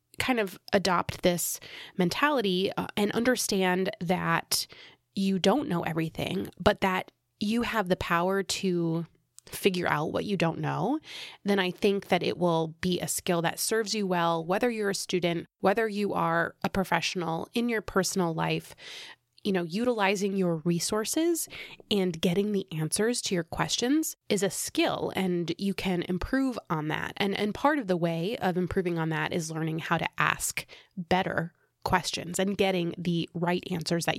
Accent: American